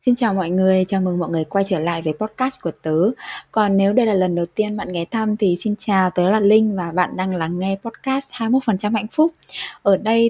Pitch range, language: 170-220 Hz, Vietnamese